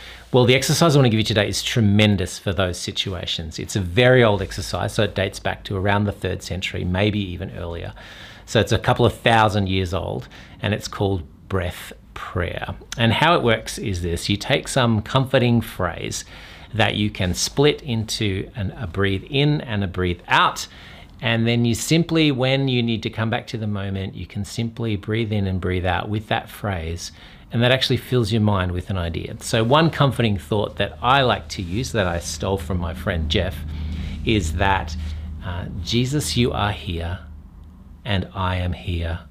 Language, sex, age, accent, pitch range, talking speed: English, male, 40-59, Australian, 90-110 Hz, 190 wpm